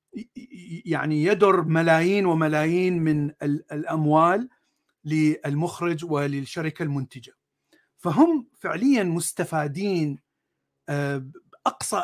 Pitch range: 145-195 Hz